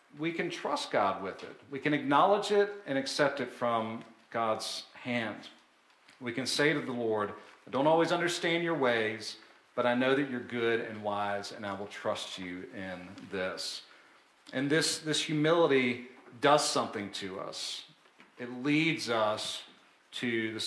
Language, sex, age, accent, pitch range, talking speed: English, male, 40-59, American, 105-145 Hz, 165 wpm